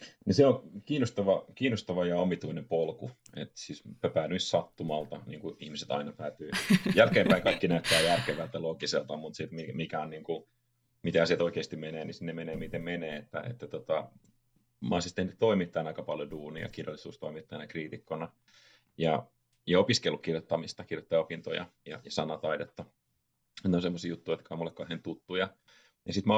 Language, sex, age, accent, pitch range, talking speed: Finnish, male, 30-49, native, 80-100 Hz, 150 wpm